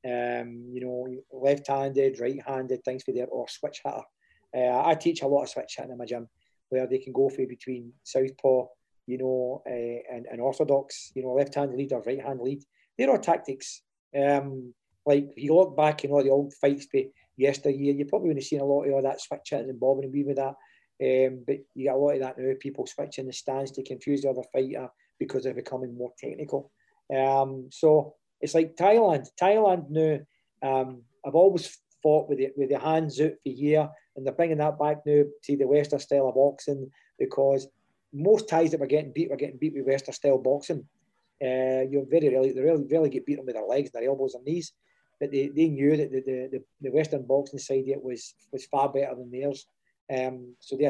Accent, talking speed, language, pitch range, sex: British, 215 wpm, English, 130-150 Hz, male